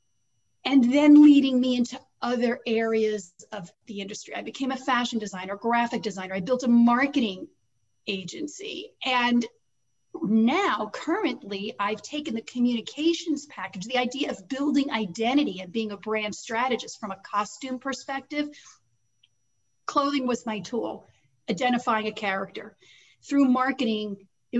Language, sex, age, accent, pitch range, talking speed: English, female, 40-59, American, 210-285 Hz, 130 wpm